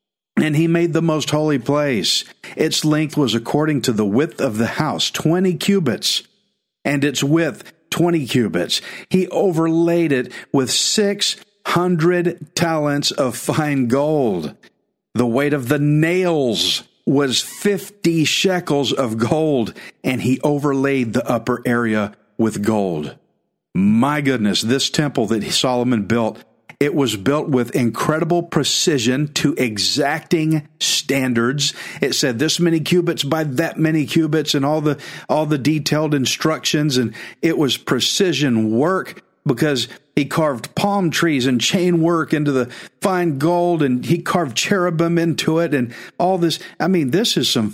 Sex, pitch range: male, 130-170 Hz